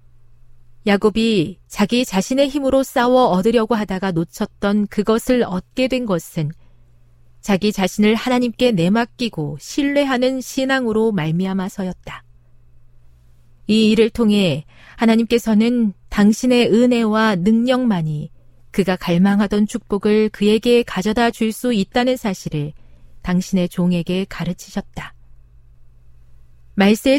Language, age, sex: Korean, 40-59, female